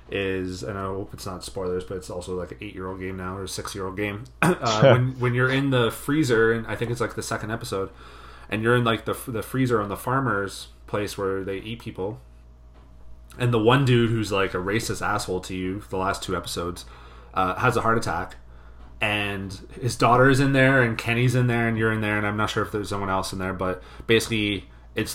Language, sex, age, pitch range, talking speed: English, male, 30-49, 90-115 Hz, 225 wpm